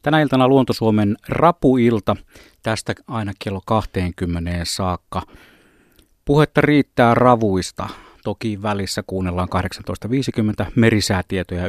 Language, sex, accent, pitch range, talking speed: Finnish, male, native, 95-125 Hz, 90 wpm